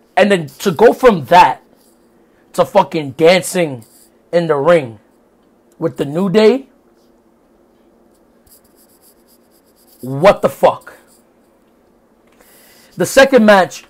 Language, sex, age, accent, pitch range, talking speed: English, male, 30-49, American, 155-200 Hz, 95 wpm